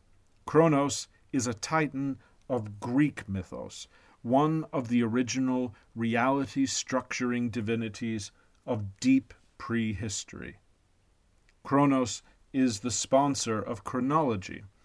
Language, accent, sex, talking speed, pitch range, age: English, American, male, 90 wpm, 105-125 Hz, 40-59